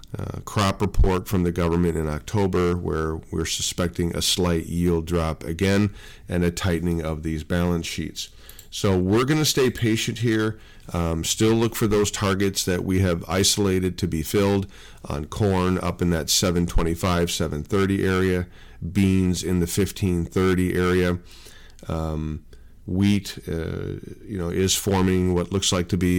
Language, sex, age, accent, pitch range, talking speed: English, male, 40-59, American, 85-95 Hz, 155 wpm